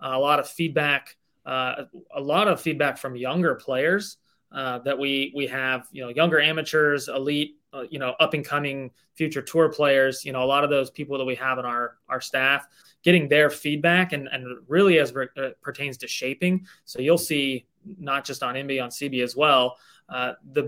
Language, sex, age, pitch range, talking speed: English, male, 20-39, 130-150 Hz, 200 wpm